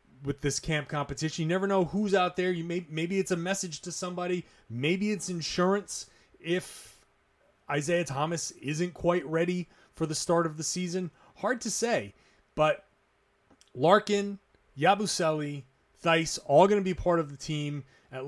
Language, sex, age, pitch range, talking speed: English, male, 30-49, 135-180 Hz, 160 wpm